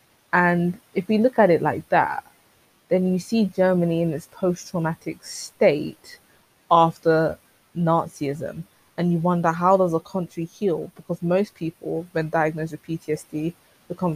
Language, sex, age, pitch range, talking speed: English, female, 20-39, 155-180 Hz, 145 wpm